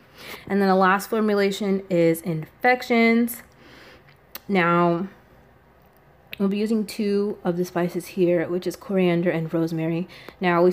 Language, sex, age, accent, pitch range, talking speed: English, female, 20-39, American, 175-210 Hz, 130 wpm